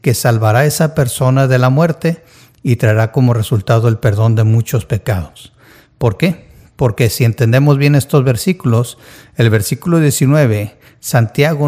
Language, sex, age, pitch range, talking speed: Spanish, male, 50-69, 115-140 Hz, 150 wpm